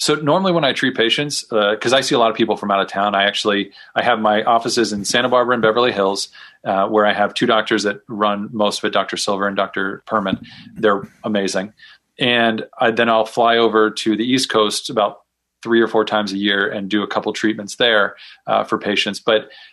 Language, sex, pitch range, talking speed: English, male, 105-120 Hz, 225 wpm